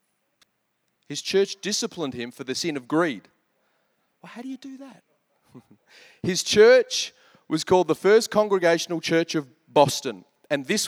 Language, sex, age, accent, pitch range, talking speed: English, male, 30-49, Australian, 145-210 Hz, 150 wpm